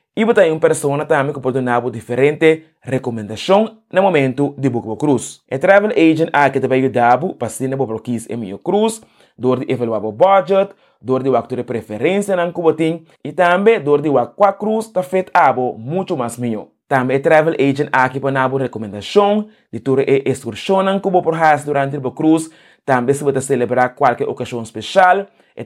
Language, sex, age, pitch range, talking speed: English, male, 20-39, 125-170 Hz, 225 wpm